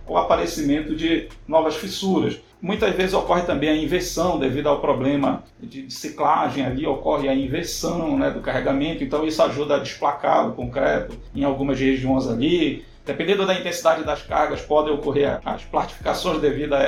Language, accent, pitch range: Portuguese, Brazilian, 140-175 Hz